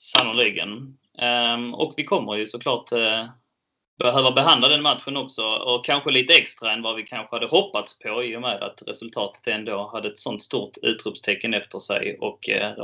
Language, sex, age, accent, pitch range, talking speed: Swedish, male, 20-39, native, 110-150 Hz, 180 wpm